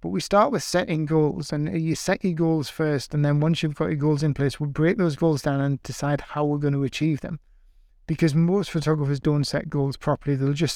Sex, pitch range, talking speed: male, 140-160 Hz, 240 wpm